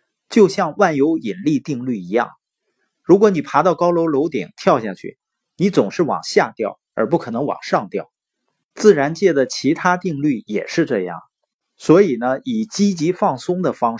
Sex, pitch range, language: male, 130-195 Hz, Chinese